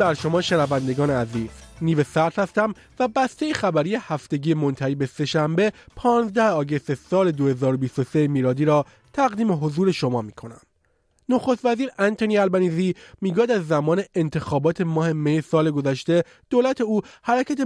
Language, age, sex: Persian, 30-49, male